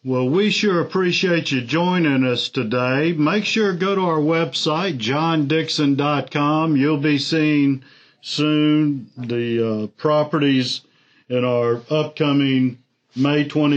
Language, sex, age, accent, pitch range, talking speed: English, male, 50-69, American, 130-150 Hz, 120 wpm